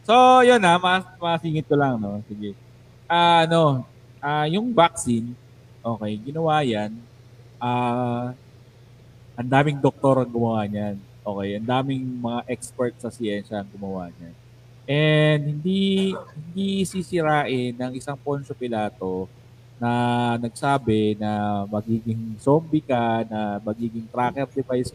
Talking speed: 125 wpm